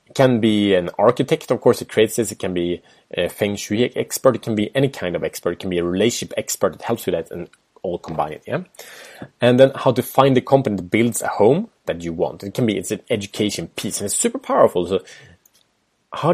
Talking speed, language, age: 235 wpm, English, 30-49